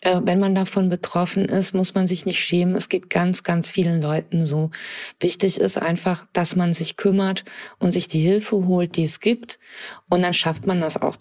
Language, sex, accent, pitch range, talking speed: German, female, German, 165-195 Hz, 205 wpm